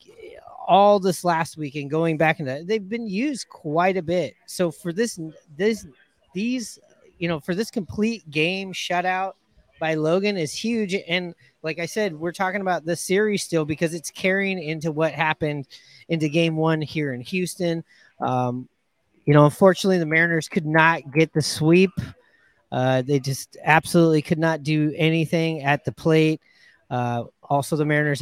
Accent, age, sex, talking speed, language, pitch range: American, 30-49, male, 165 wpm, English, 145-175 Hz